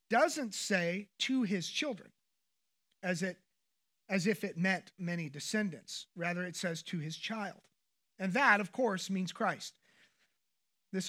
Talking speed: 135 wpm